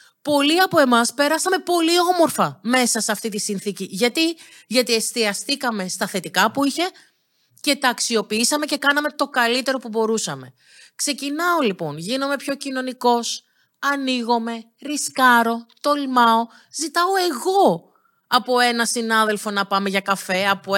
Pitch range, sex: 215-275 Hz, female